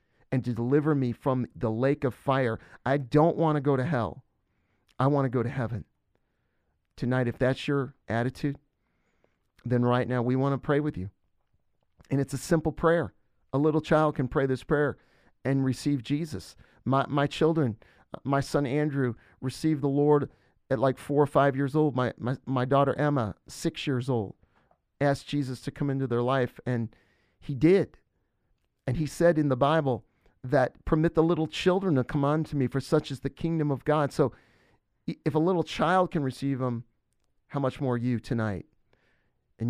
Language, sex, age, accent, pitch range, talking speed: English, male, 40-59, American, 115-140 Hz, 185 wpm